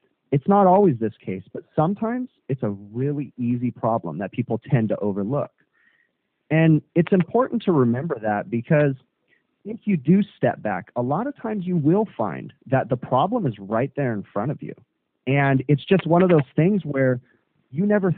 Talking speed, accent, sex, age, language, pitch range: 185 wpm, American, male, 30-49, English, 110-145 Hz